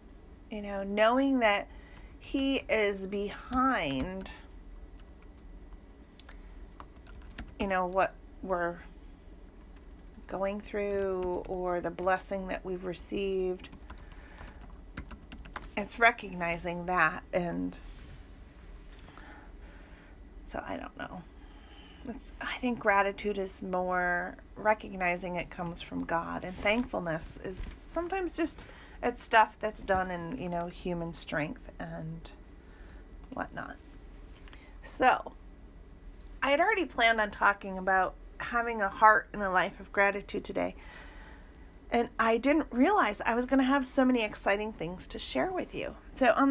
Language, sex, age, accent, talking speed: English, female, 40-59, American, 115 wpm